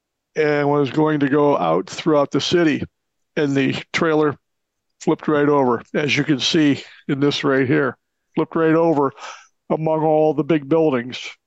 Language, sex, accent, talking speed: English, male, American, 160 wpm